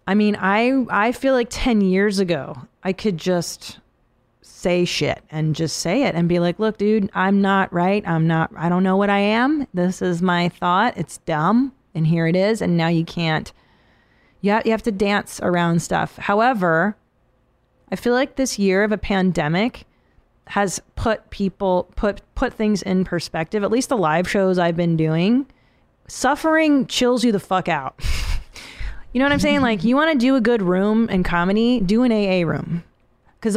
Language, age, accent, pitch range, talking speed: English, 30-49, American, 175-235 Hz, 190 wpm